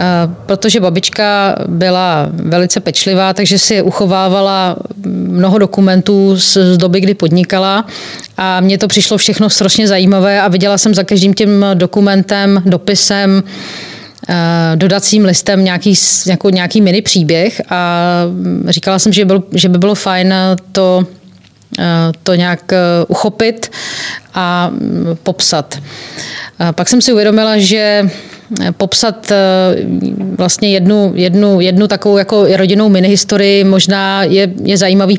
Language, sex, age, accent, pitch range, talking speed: Czech, female, 30-49, native, 180-200 Hz, 115 wpm